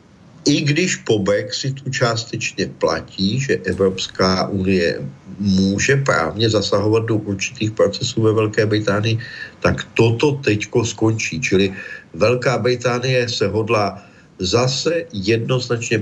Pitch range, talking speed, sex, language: 100-130 Hz, 110 wpm, male, Slovak